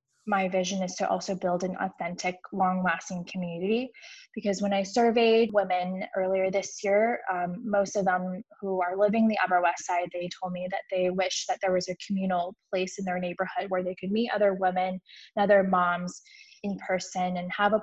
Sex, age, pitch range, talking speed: female, 20-39, 180-205 Hz, 195 wpm